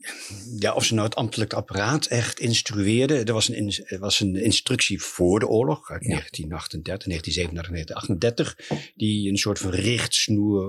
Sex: male